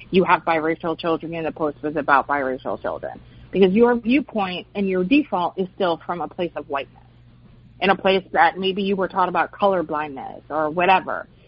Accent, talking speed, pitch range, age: American, 190 wpm, 160-225 Hz, 30-49